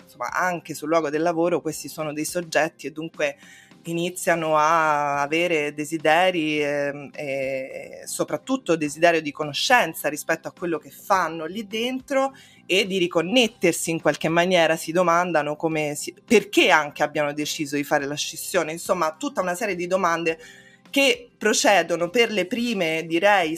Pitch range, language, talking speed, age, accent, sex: 155-190 Hz, Italian, 150 wpm, 20-39, native, female